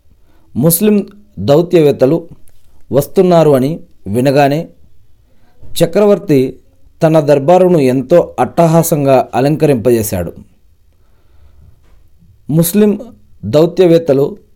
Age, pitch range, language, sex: 40-59, 100-160 Hz, Telugu, male